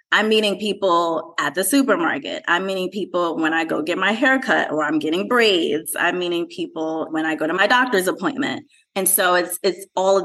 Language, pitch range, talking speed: English, 160-240 Hz, 205 wpm